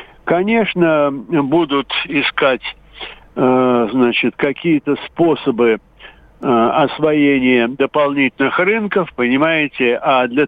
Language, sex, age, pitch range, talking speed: Russian, male, 60-79, 130-170 Hz, 70 wpm